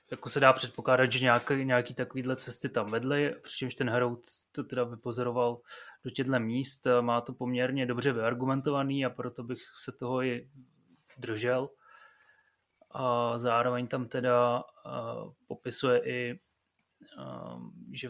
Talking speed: 135 wpm